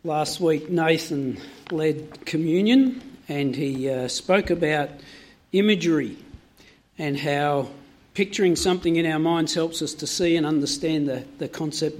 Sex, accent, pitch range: male, Australian, 155-190 Hz